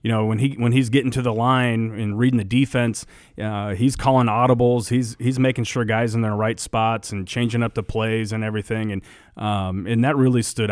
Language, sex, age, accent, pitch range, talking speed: English, male, 30-49, American, 105-120 Hz, 230 wpm